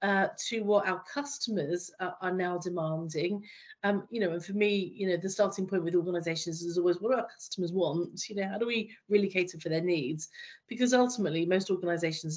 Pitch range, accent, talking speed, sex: 175-215 Hz, British, 210 wpm, female